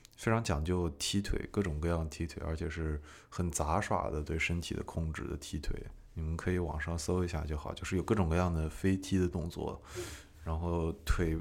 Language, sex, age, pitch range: Chinese, male, 20-39, 80-100 Hz